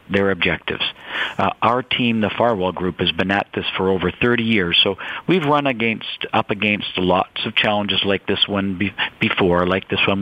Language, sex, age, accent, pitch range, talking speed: English, male, 50-69, American, 100-125 Hz, 195 wpm